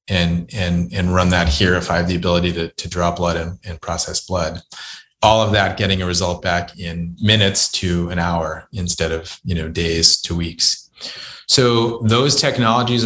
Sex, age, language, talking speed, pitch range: male, 30-49, English, 190 wpm, 85-100 Hz